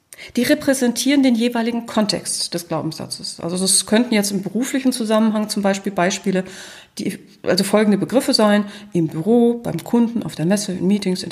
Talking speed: 165 wpm